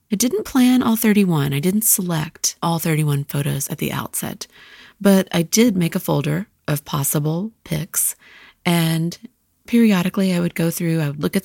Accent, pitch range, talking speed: American, 155-200 Hz, 175 wpm